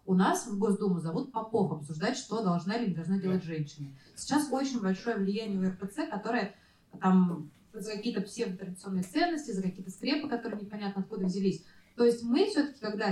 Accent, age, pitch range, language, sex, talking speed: native, 20-39, 185-235 Hz, Russian, female, 175 wpm